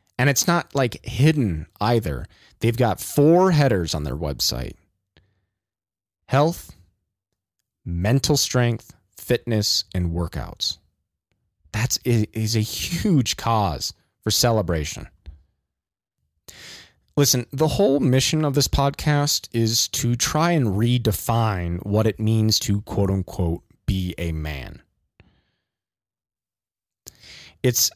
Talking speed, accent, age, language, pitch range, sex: 105 wpm, American, 30-49, English, 95-135 Hz, male